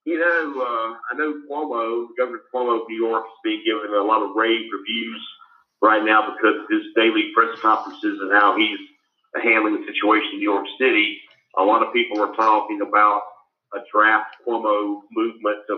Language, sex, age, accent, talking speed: English, male, 50-69, American, 185 wpm